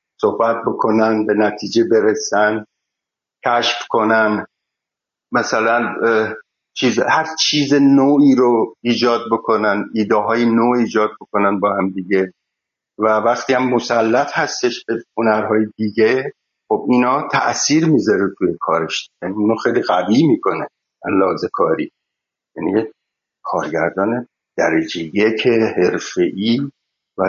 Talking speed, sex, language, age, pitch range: 115 wpm, male, Persian, 50-69, 105-125 Hz